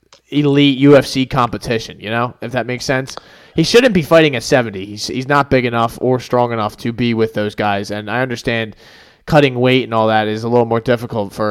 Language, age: English, 20-39